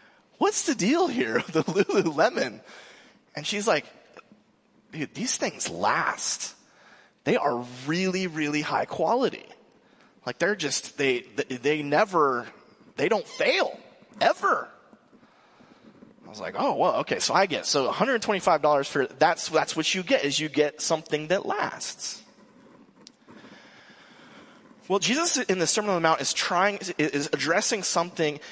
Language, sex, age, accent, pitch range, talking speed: English, male, 30-49, American, 140-190 Hz, 145 wpm